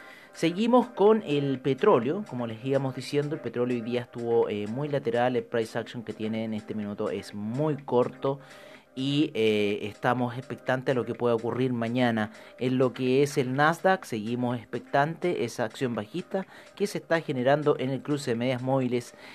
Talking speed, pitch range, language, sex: 180 wpm, 120-150 Hz, Spanish, male